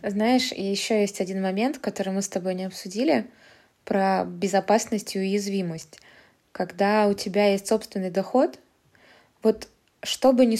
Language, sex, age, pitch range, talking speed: Russian, female, 20-39, 185-215 Hz, 140 wpm